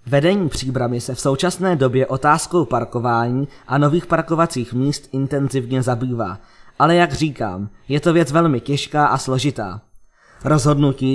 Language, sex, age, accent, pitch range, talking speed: Czech, male, 20-39, native, 125-155 Hz, 135 wpm